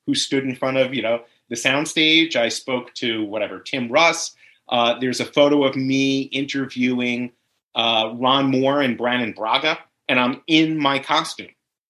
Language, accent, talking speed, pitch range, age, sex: English, American, 160 wpm, 120-145 Hz, 30-49, male